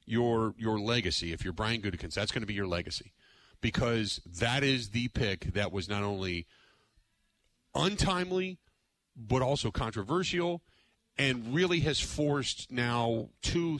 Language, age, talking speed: English, 40-59, 140 wpm